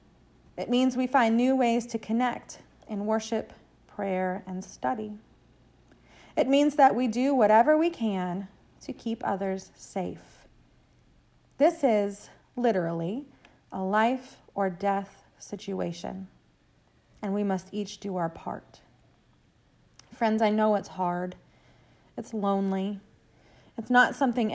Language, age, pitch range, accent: English, 30-49, 190-240 Hz, American